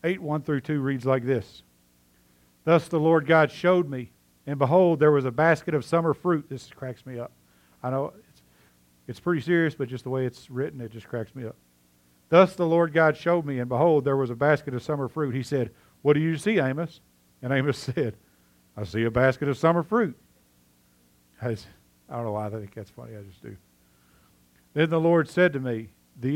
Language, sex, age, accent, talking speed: English, male, 50-69, American, 215 wpm